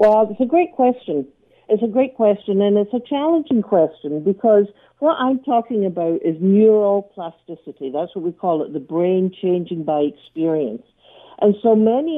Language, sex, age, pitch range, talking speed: English, female, 60-79, 170-220 Hz, 170 wpm